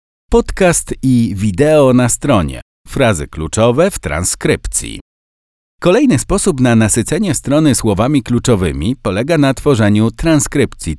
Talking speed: 110 wpm